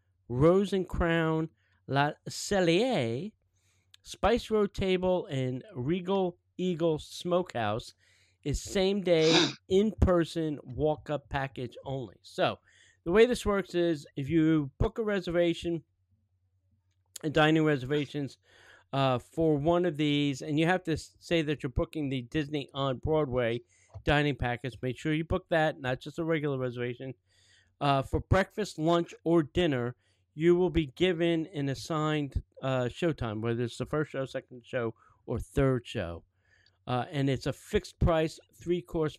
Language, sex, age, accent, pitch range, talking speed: English, male, 40-59, American, 110-160 Hz, 140 wpm